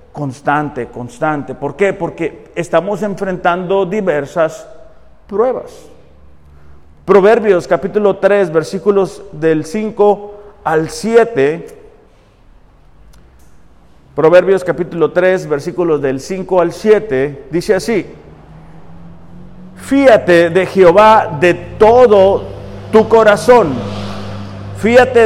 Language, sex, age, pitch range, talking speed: Spanish, male, 50-69, 155-210 Hz, 85 wpm